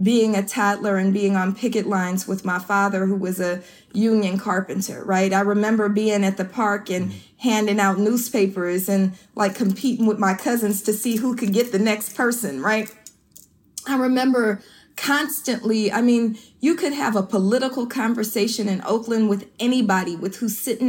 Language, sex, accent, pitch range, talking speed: English, female, American, 200-230 Hz, 170 wpm